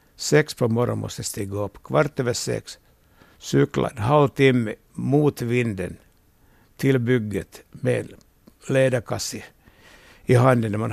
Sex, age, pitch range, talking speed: male, 60-79, 100-130 Hz, 125 wpm